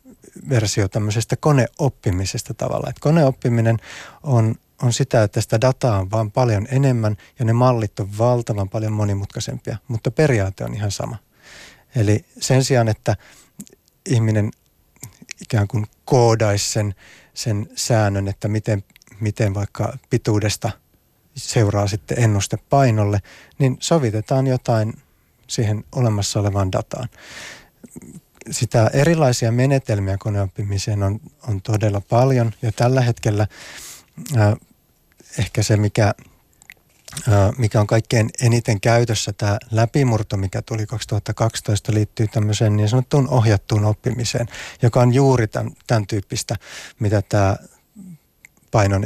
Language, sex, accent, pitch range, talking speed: Finnish, male, native, 105-125 Hz, 115 wpm